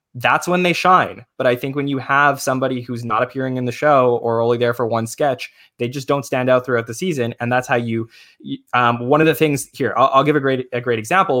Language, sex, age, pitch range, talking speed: English, male, 20-39, 115-135 Hz, 260 wpm